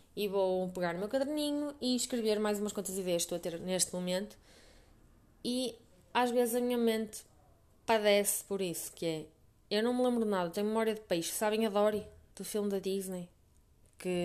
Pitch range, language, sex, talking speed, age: 185-235 Hz, Portuguese, female, 200 wpm, 20-39